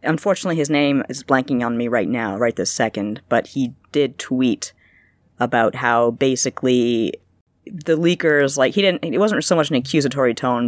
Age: 30-49